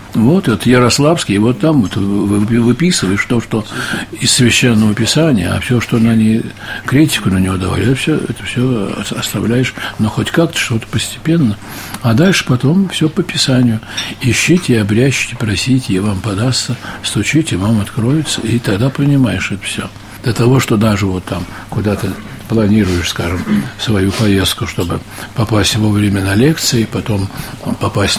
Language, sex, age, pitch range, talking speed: Russian, male, 60-79, 105-125 Hz, 150 wpm